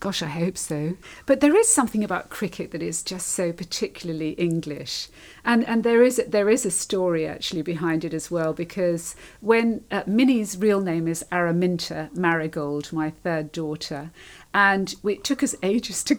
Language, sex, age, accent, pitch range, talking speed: English, female, 50-69, British, 165-215 Hz, 180 wpm